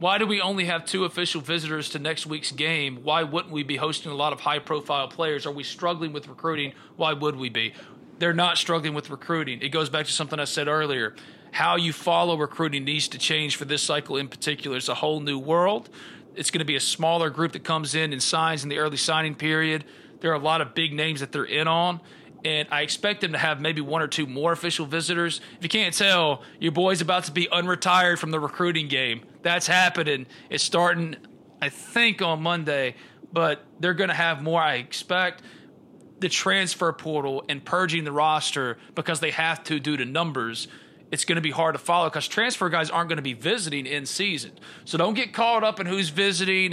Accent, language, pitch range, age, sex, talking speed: American, English, 150-175 Hz, 40-59, male, 220 wpm